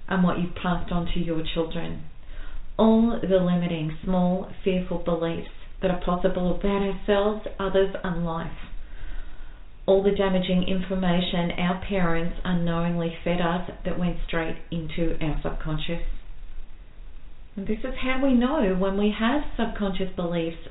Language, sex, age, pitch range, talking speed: English, female, 40-59, 170-210 Hz, 140 wpm